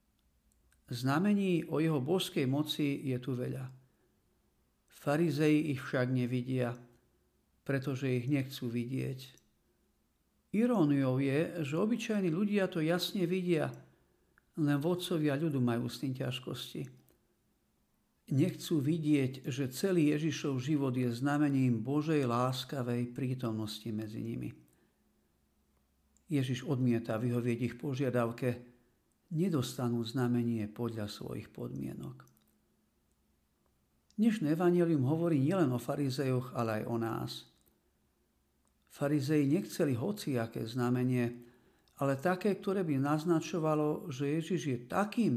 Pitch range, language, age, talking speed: 120-160 Hz, Slovak, 50-69, 105 wpm